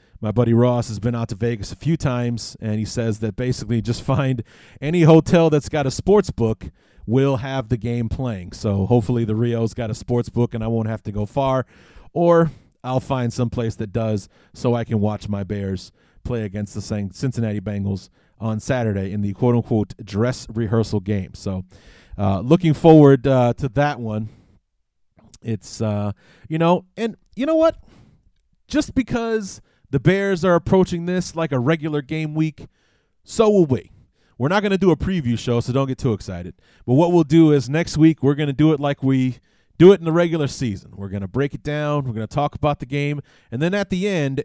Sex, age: male, 40-59